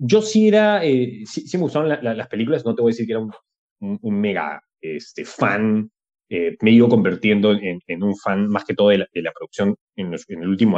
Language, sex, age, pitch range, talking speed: Spanish, male, 20-39, 105-160 Hz, 255 wpm